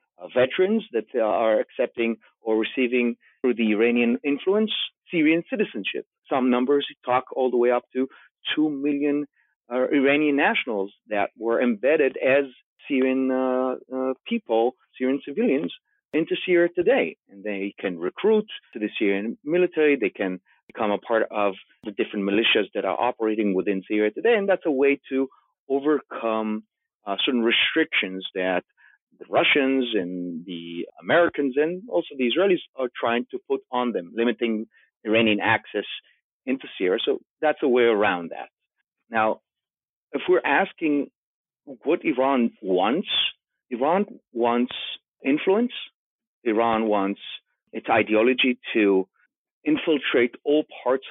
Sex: male